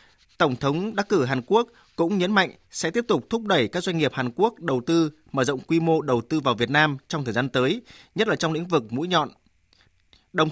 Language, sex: Vietnamese, male